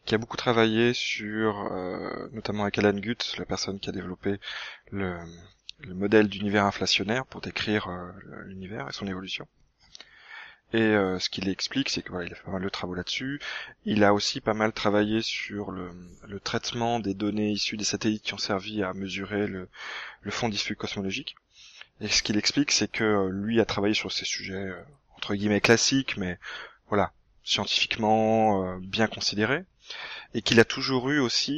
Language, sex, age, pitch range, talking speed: French, male, 20-39, 100-115 Hz, 180 wpm